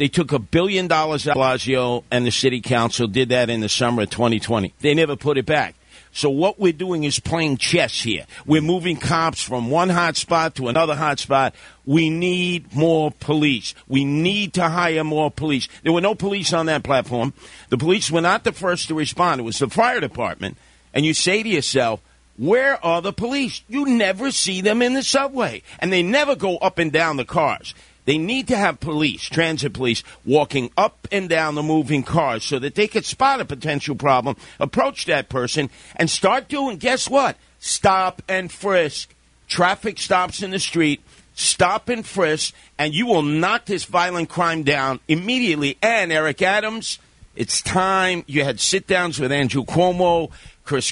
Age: 50-69